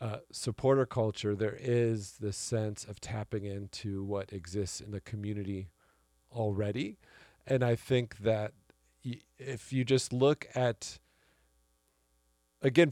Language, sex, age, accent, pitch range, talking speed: English, male, 40-59, American, 105-130 Hz, 125 wpm